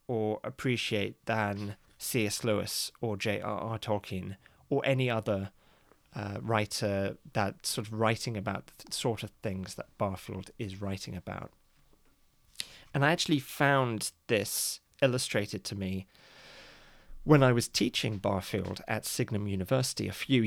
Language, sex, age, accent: English, male, 30-49, British